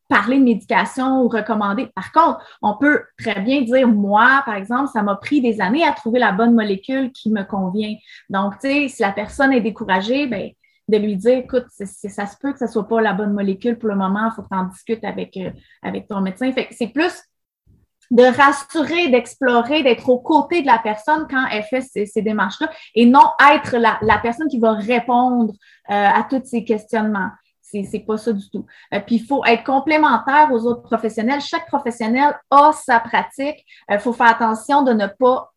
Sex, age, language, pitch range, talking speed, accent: female, 20-39, French, 210-270 Hz, 210 wpm, Canadian